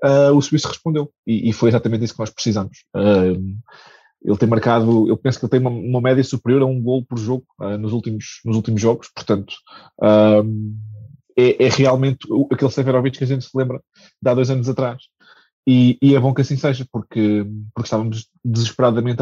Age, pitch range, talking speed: 20-39, 115-140 Hz, 205 wpm